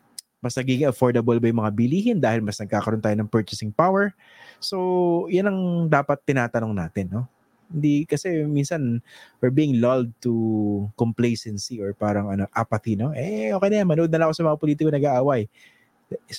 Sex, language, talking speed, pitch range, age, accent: male, English, 175 wpm, 115-165 Hz, 20-39, Filipino